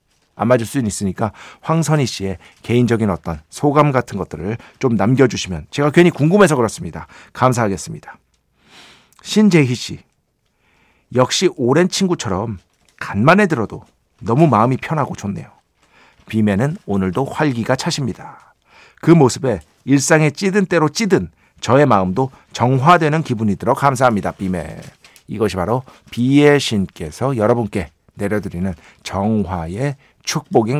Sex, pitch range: male, 100-155 Hz